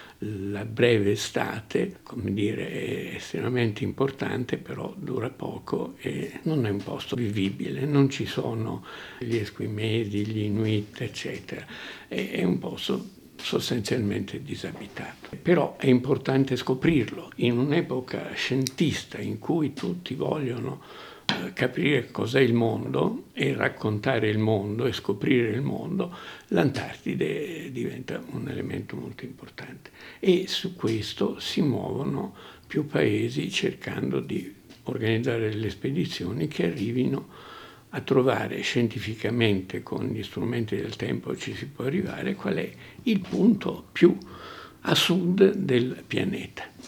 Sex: male